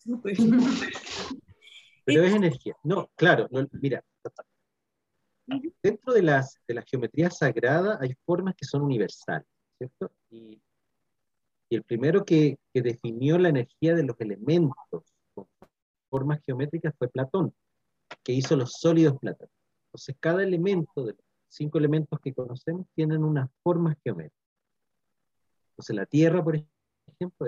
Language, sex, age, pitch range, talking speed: Spanish, male, 40-59, 115-160 Hz, 120 wpm